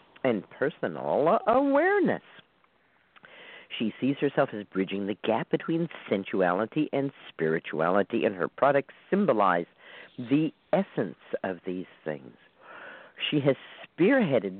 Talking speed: 105 wpm